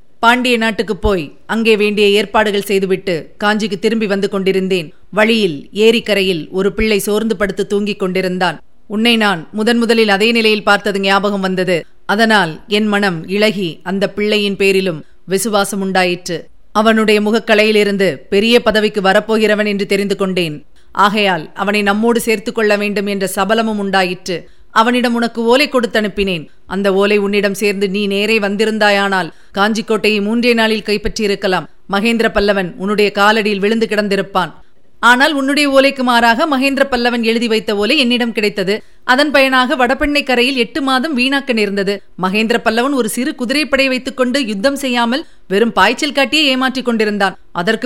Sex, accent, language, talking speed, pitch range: female, native, Tamil, 135 wpm, 200-240 Hz